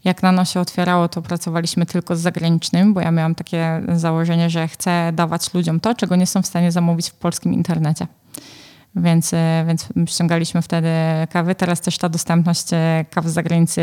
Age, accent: 20-39, native